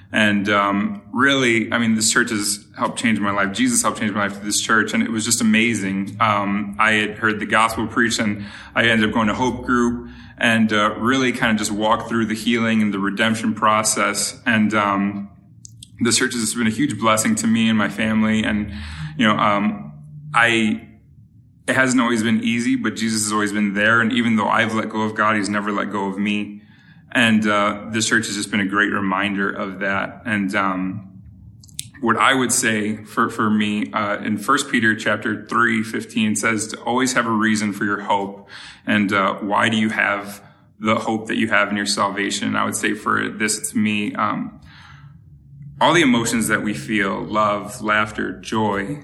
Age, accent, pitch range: 20-39, American, 105-115 Hz